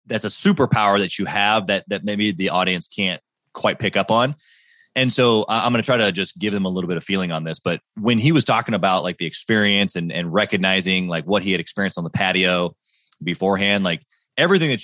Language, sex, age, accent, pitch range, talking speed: English, male, 20-39, American, 95-130 Hz, 230 wpm